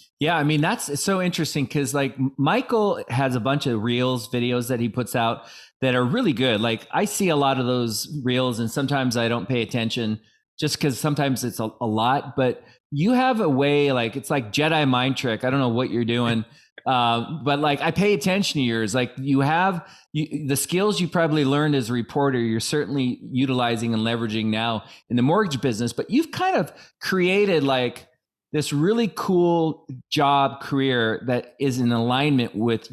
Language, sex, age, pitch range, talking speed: English, male, 20-39, 125-160 Hz, 195 wpm